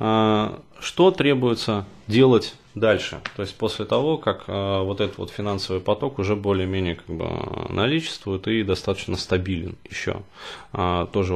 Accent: native